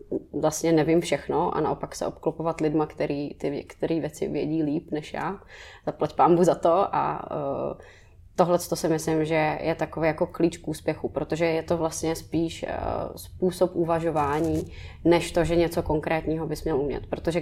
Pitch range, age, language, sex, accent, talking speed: 150-170 Hz, 20-39, Czech, female, native, 170 wpm